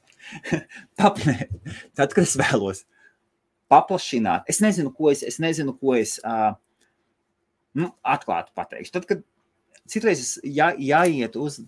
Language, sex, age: English, male, 30-49